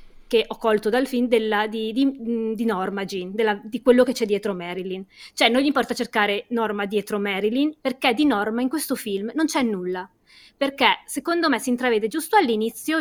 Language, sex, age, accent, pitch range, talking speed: Italian, female, 20-39, native, 215-270 Hz, 195 wpm